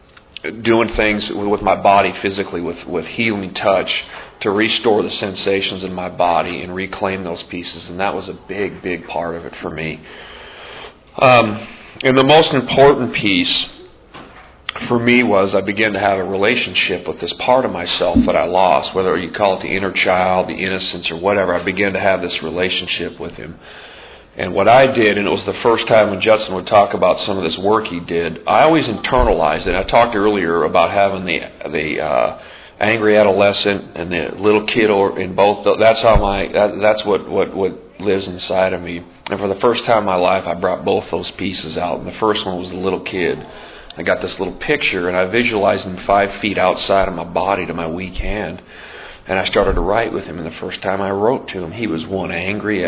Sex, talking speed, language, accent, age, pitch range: male, 215 wpm, English, American, 40-59, 90-105 Hz